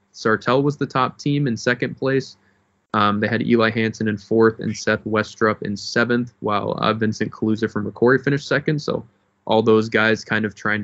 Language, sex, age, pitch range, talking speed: English, male, 20-39, 105-120 Hz, 195 wpm